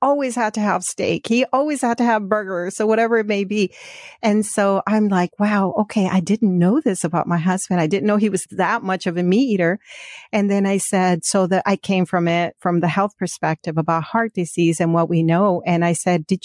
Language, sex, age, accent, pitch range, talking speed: English, female, 40-59, American, 170-210 Hz, 235 wpm